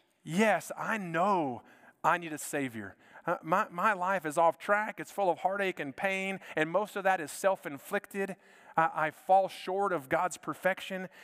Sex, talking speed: male, 175 wpm